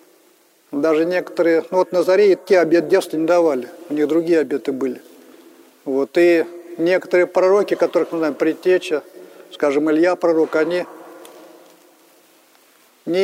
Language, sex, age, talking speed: Russian, male, 40-59, 130 wpm